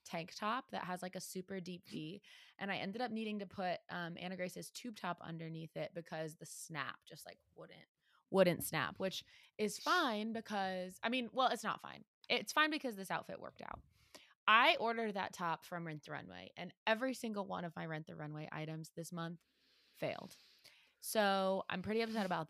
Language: English